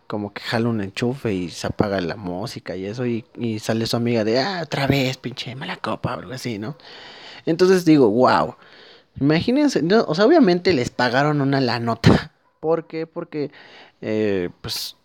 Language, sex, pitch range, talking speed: Spanish, male, 115-145 Hz, 180 wpm